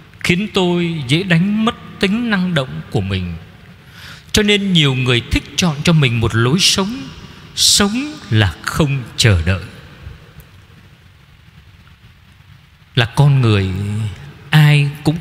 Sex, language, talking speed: male, Vietnamese, 120 wpm